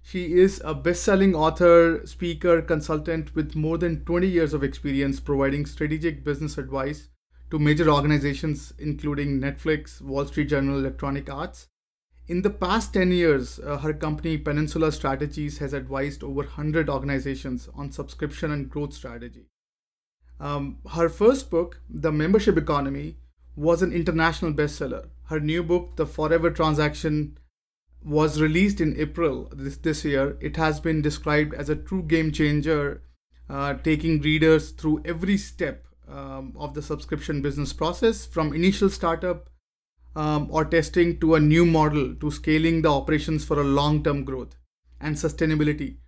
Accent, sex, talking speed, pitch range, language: Indian, male, 145 wpm, 140-160 Hz, English